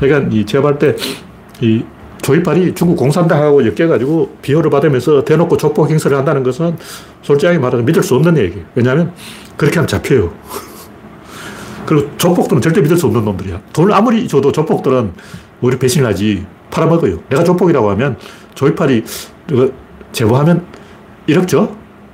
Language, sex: Korean, male